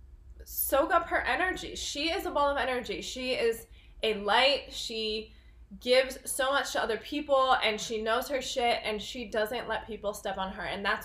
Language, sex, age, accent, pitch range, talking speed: English, female, 20-39, American, 210-275 Hz, 195 wpm